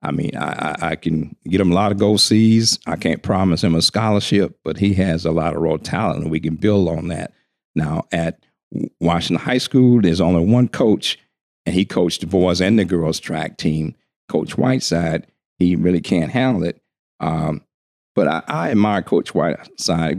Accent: American